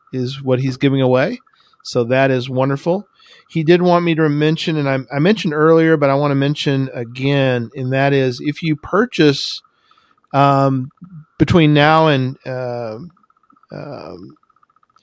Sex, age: male, 40-59